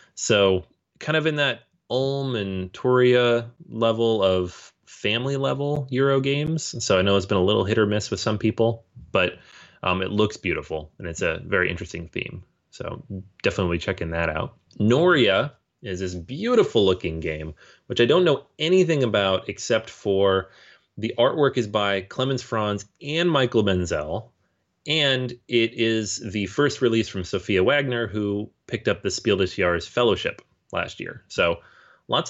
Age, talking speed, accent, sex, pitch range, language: 30-49, 160 wpm, American, male, 90-120 Hz, English